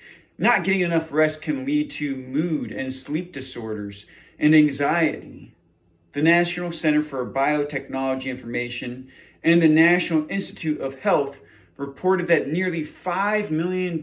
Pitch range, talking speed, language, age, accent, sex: 130-175 Hz, 130 wpm, English, 30-49, American, male